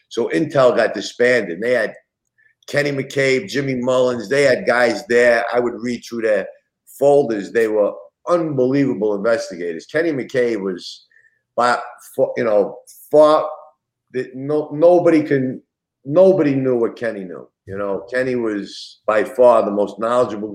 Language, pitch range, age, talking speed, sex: English, 115-155 Hz, 50-69, 145 wpm, male